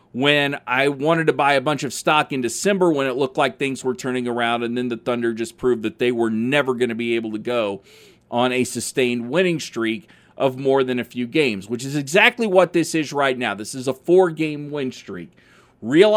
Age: 40-59